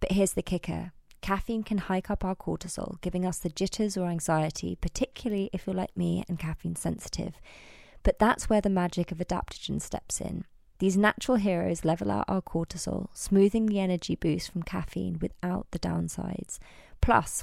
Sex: female